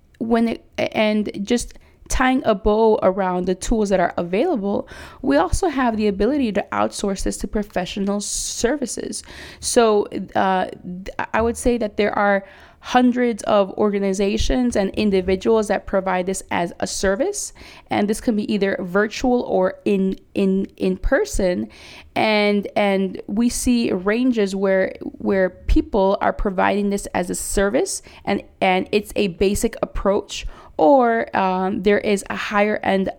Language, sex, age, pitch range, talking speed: English, female, 20-39, 185-220 Hz, 145 wpm